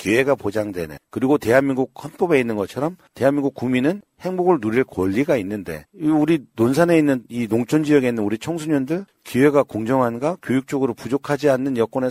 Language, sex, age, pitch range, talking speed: English, male, 50-69, 110-155 Hz, 140 wpm